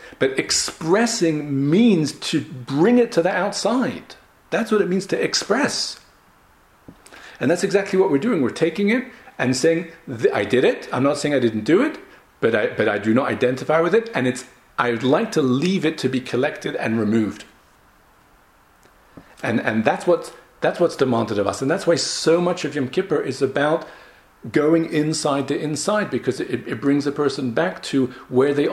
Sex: male